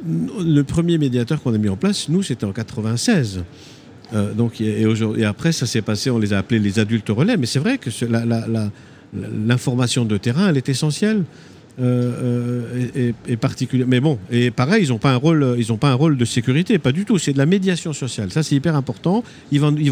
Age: 50-69